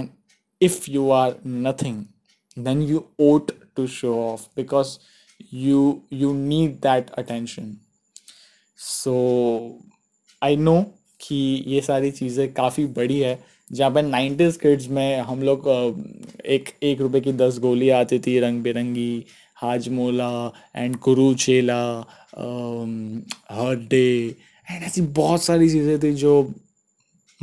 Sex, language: male, English